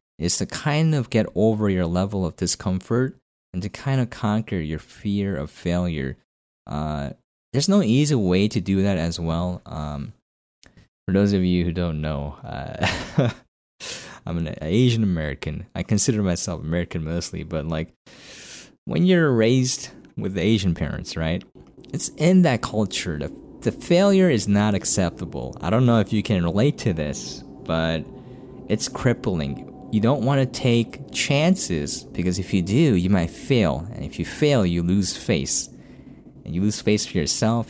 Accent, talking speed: American, 165 wpm